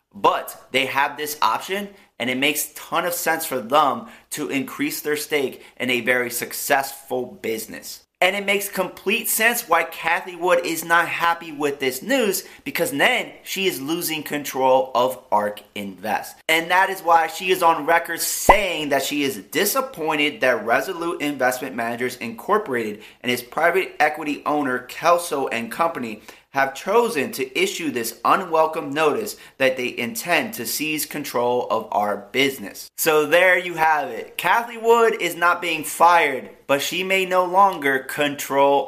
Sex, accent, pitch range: male, American, 125-170 Hz